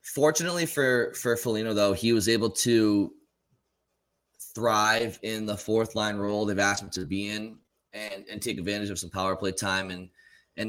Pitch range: 95-115 Hz